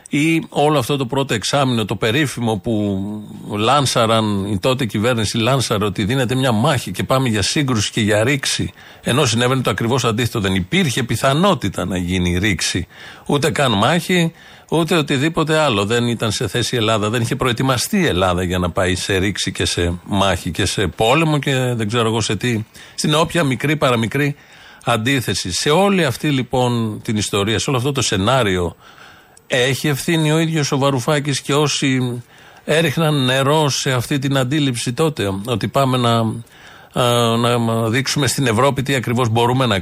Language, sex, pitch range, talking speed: Greek, male, 110-145 Hz, 170 wpm